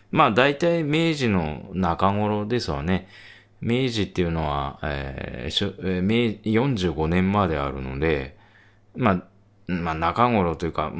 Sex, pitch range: male, 80-110 Hz